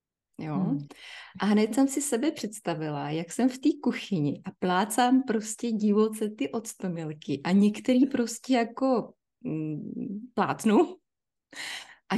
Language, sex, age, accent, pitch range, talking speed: Czech, female, 20-39, native, 180-245 Hz, 125 wpm